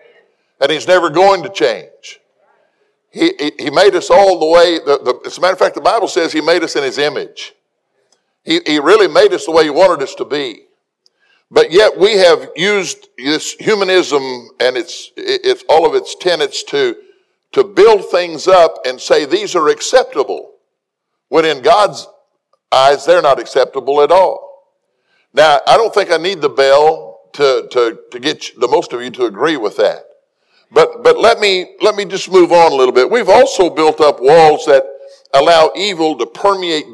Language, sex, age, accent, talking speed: English, male, 50-69, American, 190 wpm